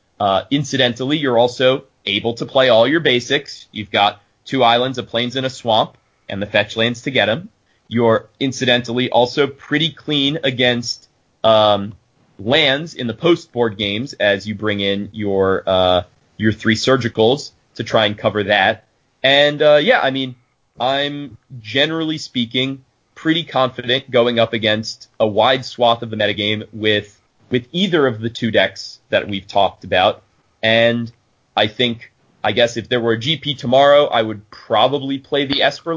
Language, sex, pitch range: English, male, 110-135 Hz